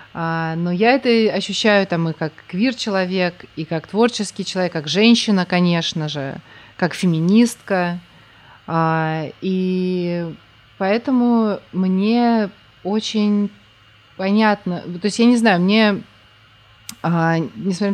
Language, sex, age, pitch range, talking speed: Russian, female, 20-39, 170-215 Hz, 100 wpm